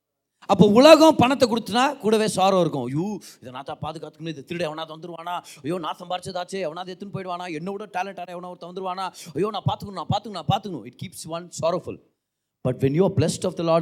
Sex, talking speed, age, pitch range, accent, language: male, 50 wpm, 30-49, 115-170 Hz, native, Tamil